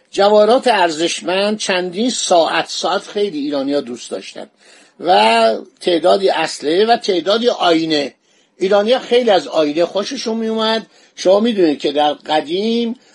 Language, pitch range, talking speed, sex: Persian, 155-220 Hz, 125 wpm, male